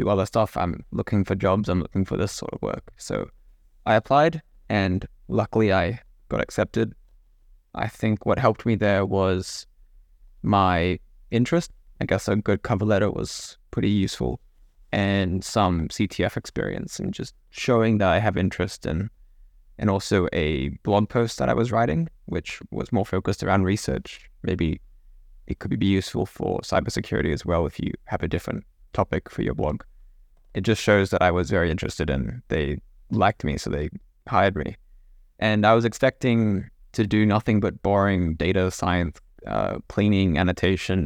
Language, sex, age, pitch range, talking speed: English, male, 20-39, 90-110 Hz, 165 wpm